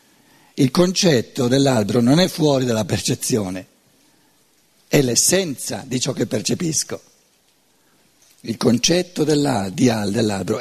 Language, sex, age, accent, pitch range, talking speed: Italian, male, 60-79, native, 130-185 Hz, 100 wpm